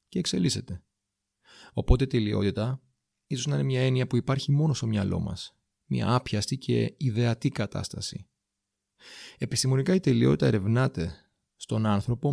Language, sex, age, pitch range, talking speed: Greek, male, 30-49, 105-130 Hz, 130 wpm